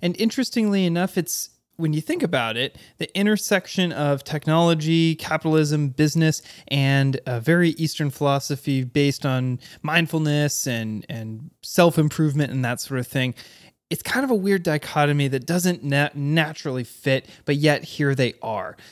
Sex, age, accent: male, 20-39, American